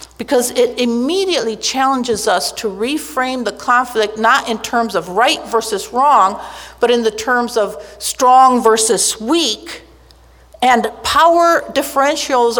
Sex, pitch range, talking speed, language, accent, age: female, 215-285 Hz, 130 wpm, English, American, 50-69